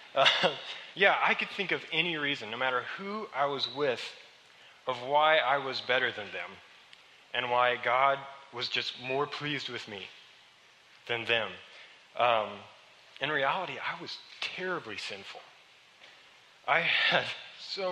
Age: 20-39